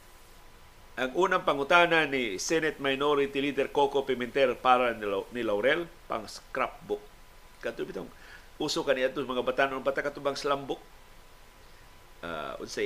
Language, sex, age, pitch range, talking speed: Filipino, male, 50-69, 120-165 Hz, 110 wpm